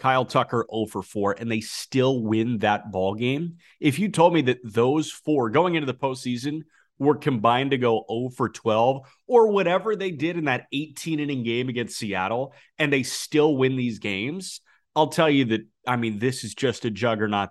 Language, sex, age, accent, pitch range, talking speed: English, male, 30-49, American, 105-145 Hz, 180 wpm